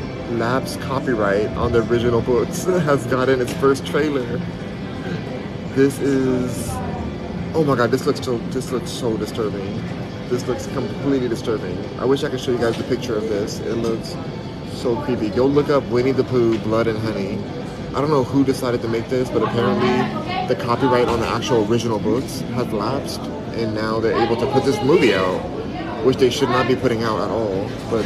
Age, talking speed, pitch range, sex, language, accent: 30-49, 190 wpm, 110-125 Hz, male, English, American